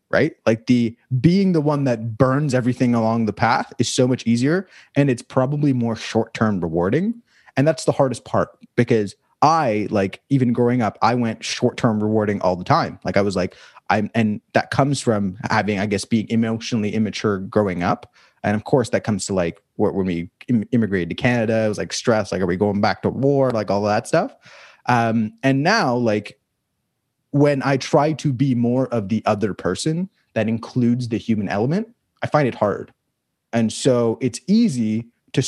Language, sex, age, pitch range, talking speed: English, male, 20-39, 110-140 Hz, 190 wpm